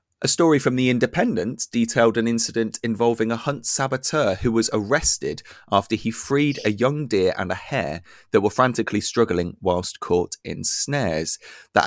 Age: 30-49